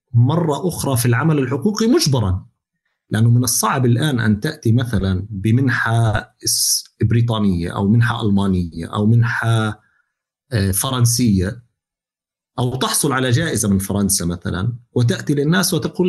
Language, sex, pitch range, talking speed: Arabic, male, 115-155 Hz, 115 wpm